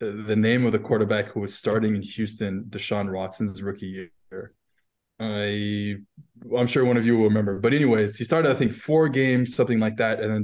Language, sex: English, male